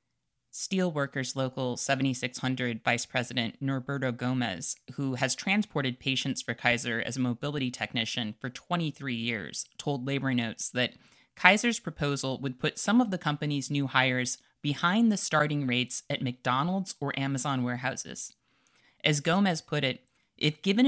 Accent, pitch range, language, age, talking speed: American, 120-150 Hz, English, 20-39, 140 wpm